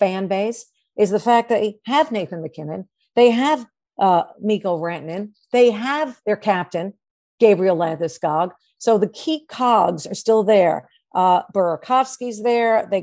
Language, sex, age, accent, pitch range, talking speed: English, female, 50-69, American, 190-225 Hz, 145 wpm